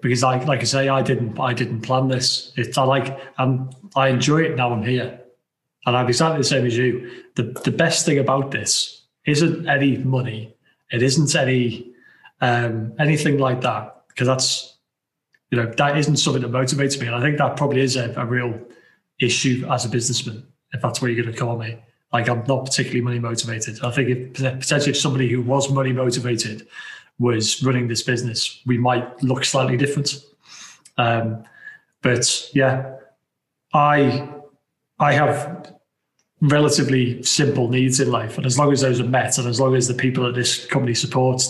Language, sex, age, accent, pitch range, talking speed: English, male, 30-49, British, 125-140 Hz, 185 wpm